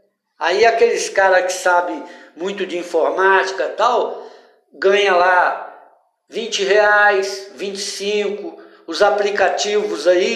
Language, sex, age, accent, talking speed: Portuguese, male, 60-79, Brazilian, 105 wpm